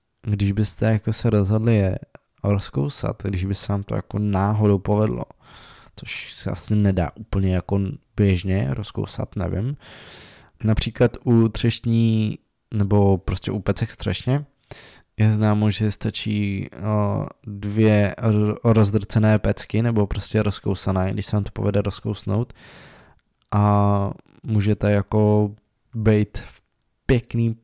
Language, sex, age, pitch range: Czech, male, 20-39, 100-115 Hz